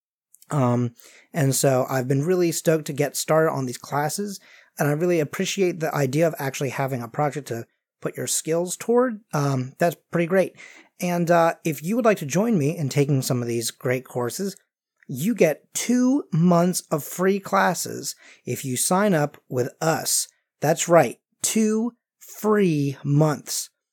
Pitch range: 135-175 Hz